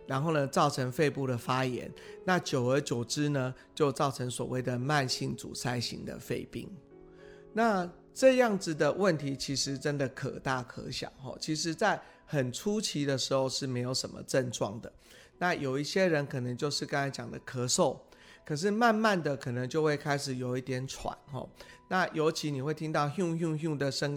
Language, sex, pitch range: Chinese, male, 135-165 Hz